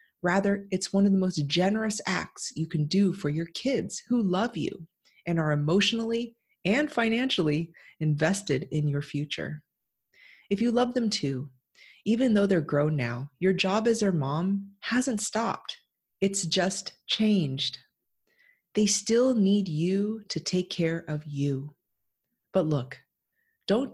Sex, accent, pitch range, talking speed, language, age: female, American, 155-205 Hz, 145 wpm, English, 30-49